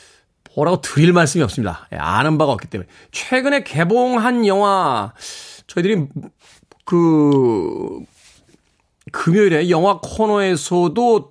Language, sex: Korean, male